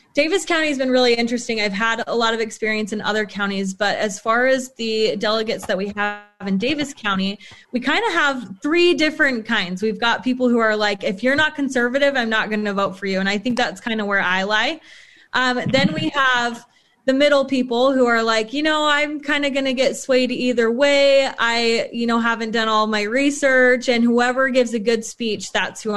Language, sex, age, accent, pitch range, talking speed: English, female, 20-39, American, 215-265 Hz, 225 wpm